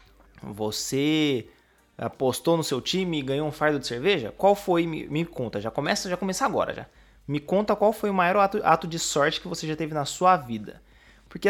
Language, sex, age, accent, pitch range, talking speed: Portuguese, male, 20-39, Brazilian, 145-225 Hz, 210 wpm